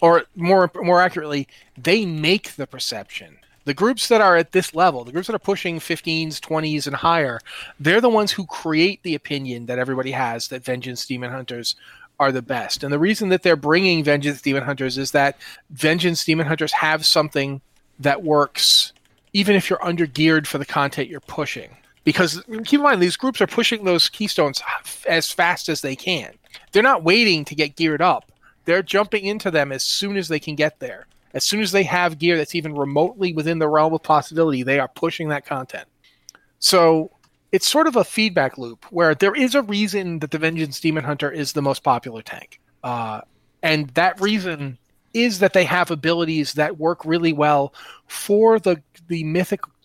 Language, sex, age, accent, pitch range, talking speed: English, male, 30-49, American, 145-185 Hz, 190 wpm